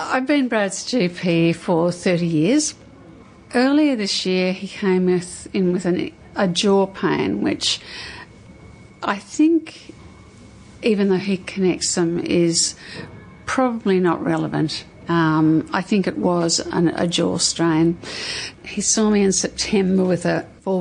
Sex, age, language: female, 60-79, English